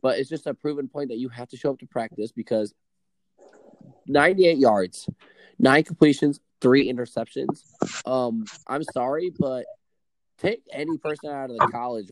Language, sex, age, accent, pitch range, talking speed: English, male, 20-39, American, 115-155 Hz, 160 wpm